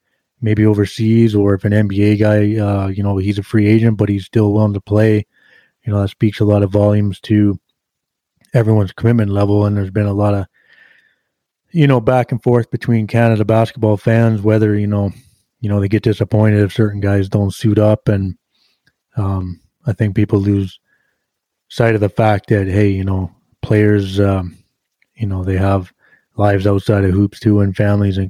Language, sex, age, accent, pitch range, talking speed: English, male, 20-39, American, 100-110 Hz, 190 wpm